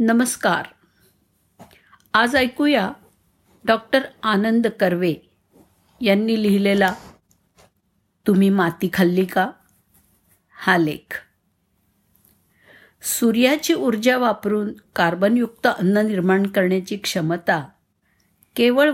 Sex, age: female, 50-69